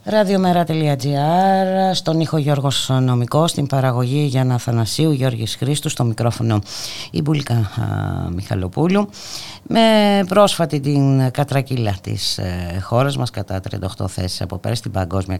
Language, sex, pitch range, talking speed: Greek, female, 90-130 Hz, 115 wpm